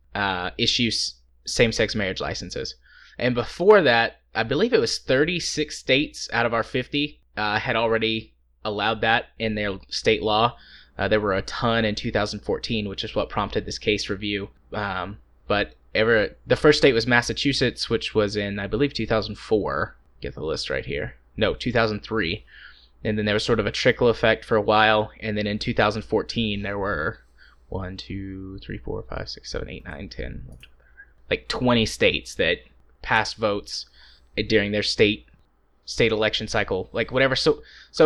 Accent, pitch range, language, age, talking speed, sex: American, 100-115 Hz, English, 20-39, 170 wpm, male